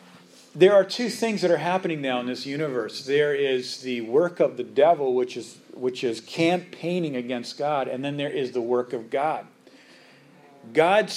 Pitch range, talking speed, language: 125-170 Hz, 185 wpm, English